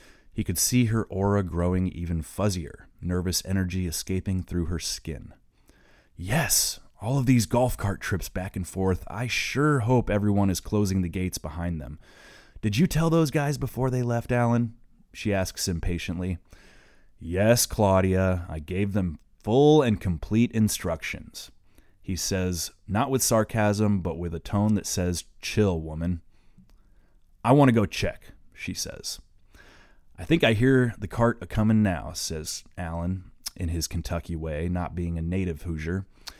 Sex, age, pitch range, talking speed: male, 30-49, 85-105 Hz, 155 wpm